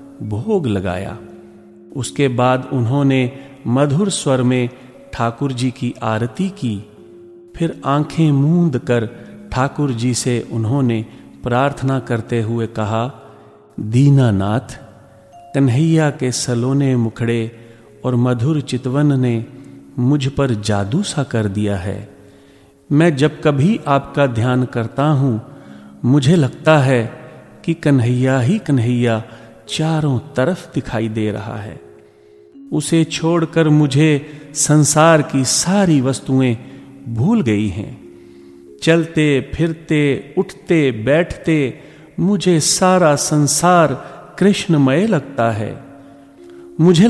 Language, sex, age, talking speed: Hindi, male, 40-59, 105 wpm